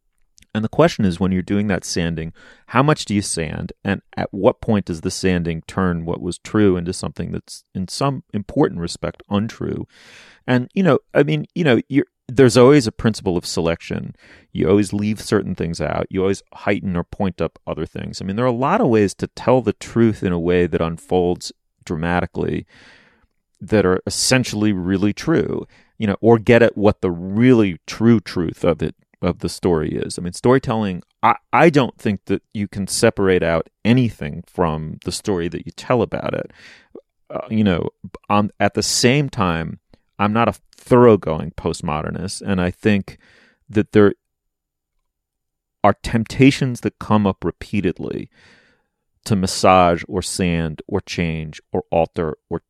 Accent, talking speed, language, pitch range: American, 175 wpm, English, 90-110 Hz